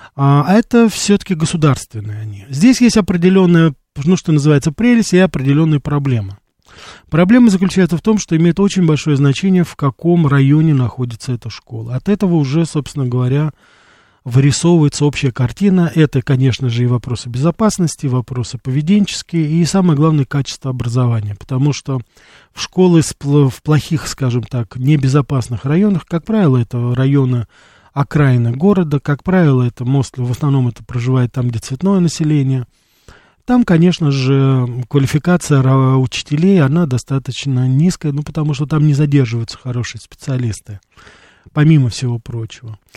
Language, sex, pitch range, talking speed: Russian, male, 130-165 Hz, 135 wpm